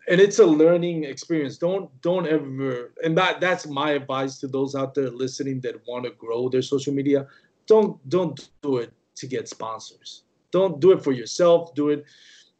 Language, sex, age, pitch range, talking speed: English, male, 30-49, 130-155 Hz, 185 wpm